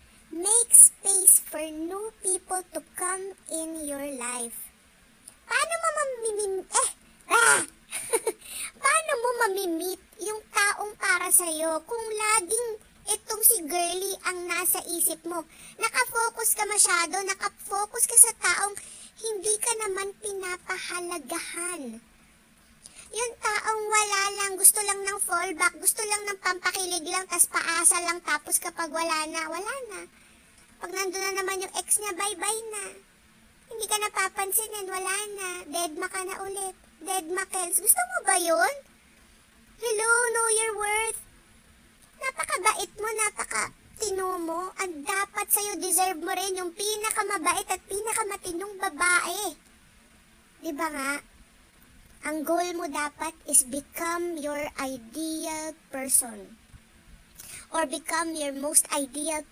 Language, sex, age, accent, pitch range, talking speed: Filipino, male, 40-59, native, 330-415 Hz, 125 wpm